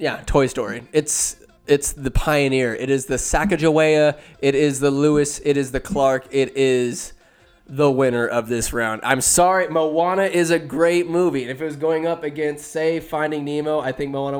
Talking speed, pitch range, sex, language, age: 190 wpm, 130-165 Hz, male, English, 20-39